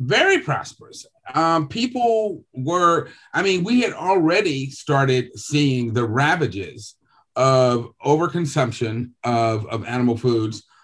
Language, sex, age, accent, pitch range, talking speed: English, male, 30-49, American, 105-135 Hz, 110 wpm